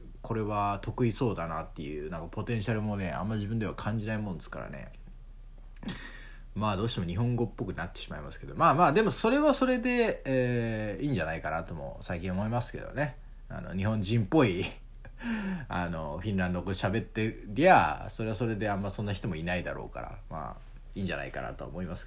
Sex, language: male, Japanese